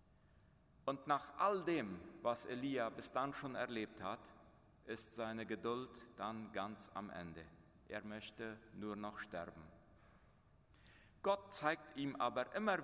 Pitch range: 95-125 Hz